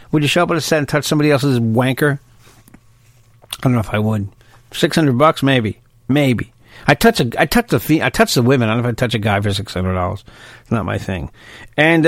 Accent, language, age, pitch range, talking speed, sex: American, English, 50-69, 120-165 Hz, 255 wpm, male